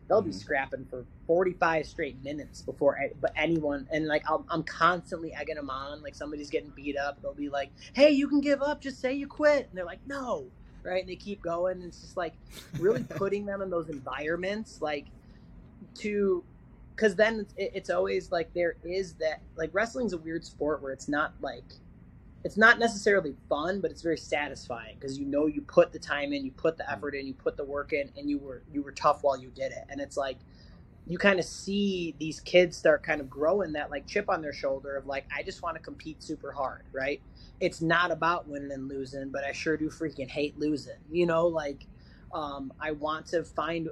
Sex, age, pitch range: male, 20-39, 140-180 Hz